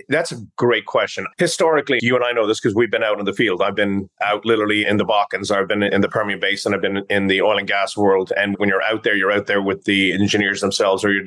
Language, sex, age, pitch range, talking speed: English, male, 30-49, 100-115 Hz, 275 wpm